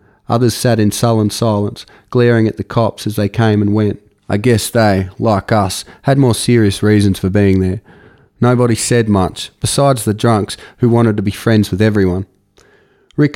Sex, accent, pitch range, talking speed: male, Australian, 105-120 Hz, 180 wpm